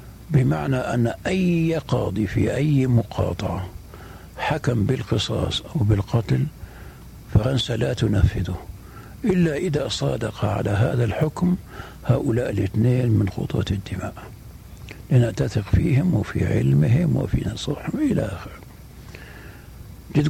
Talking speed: 100 wpm